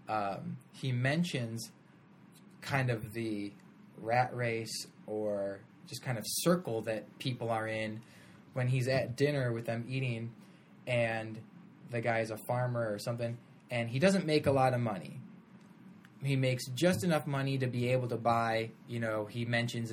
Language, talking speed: English, 165 wpm